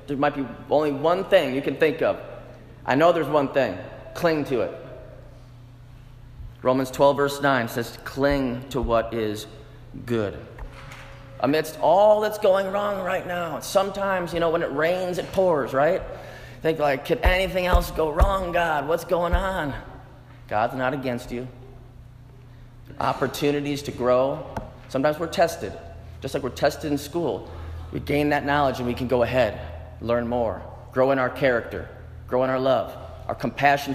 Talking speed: 165 wpm